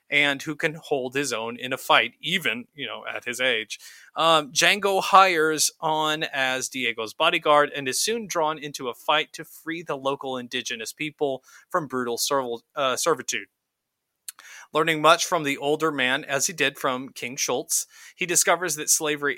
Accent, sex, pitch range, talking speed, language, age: American, male, 125-155 Hz, 175 wpm, English, 30-49